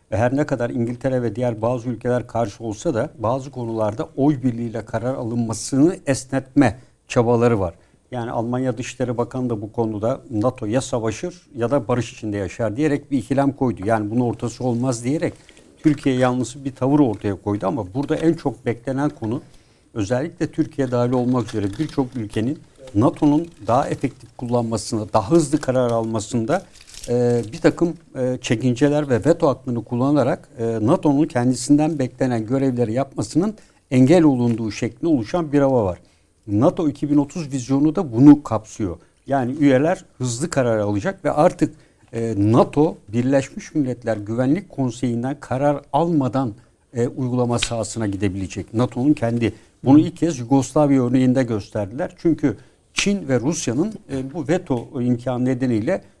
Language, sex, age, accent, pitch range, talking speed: Turkish, male, 60-79, native, 115-145 Hz, 145 wpm